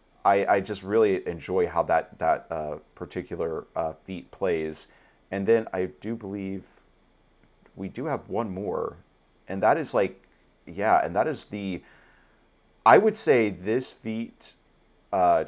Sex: male